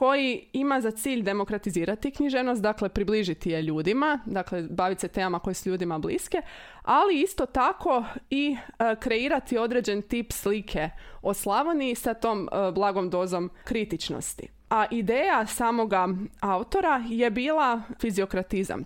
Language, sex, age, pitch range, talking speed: Croatian, female, 20-39, 195-255 Hz, 135 wpm